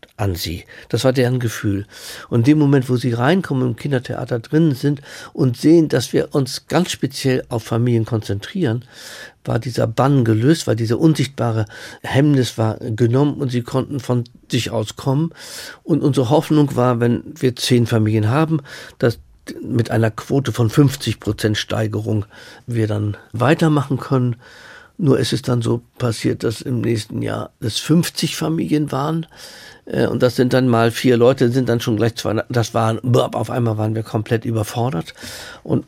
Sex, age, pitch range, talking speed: male, 50-69, 110-130 Hz, 170 wpm